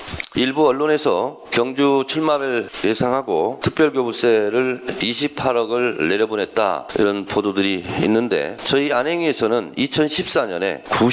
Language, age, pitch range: Korean, 40-59, 110-150 Hz